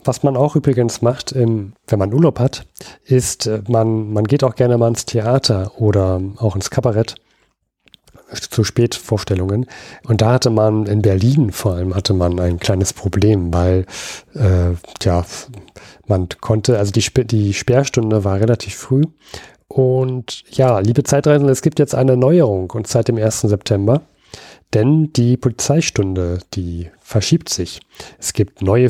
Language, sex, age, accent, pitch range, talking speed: German, male, 40-59, German, 105-130 Hz, 150 wpm